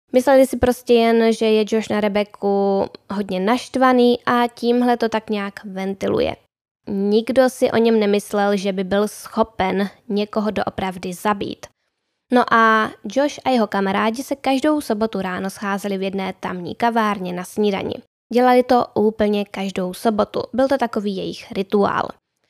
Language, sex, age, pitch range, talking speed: Czech, female, 10-29, 200-245 Hz, 150 wpm